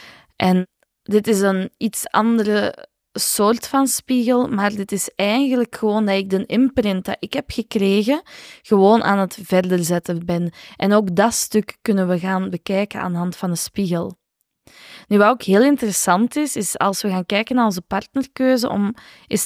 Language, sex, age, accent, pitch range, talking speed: Dutch, female, 20-39, Dutch, 185-225 Hz, 180 wpm